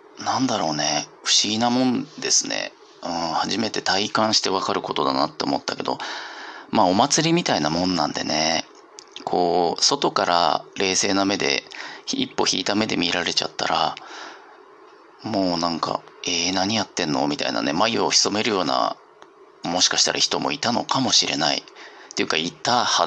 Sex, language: male, Japanese